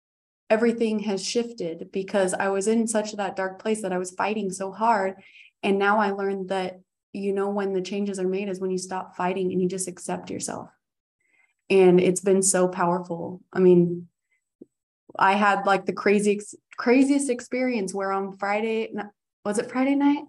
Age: 20-39